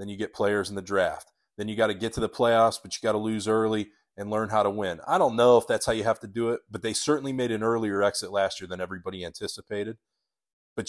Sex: male